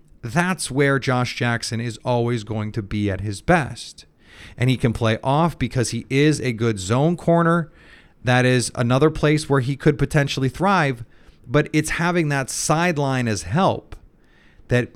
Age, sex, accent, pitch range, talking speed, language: 30-49, male, American, 115-145 Hz, 165 wpm, English